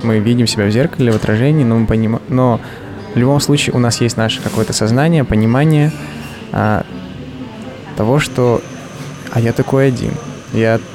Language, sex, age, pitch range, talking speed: Russian, male, 20-39, 110-130 Hz, 160 wpm